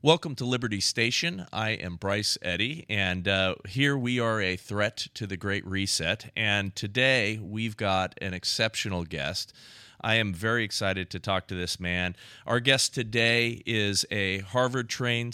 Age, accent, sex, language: 40-59, American, male, English